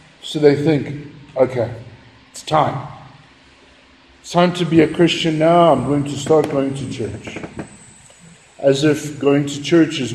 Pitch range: 135-175 Hz